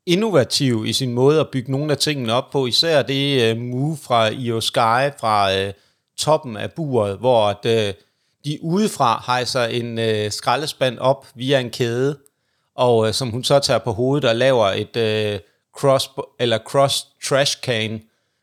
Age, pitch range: 30-49, 115-145 Hz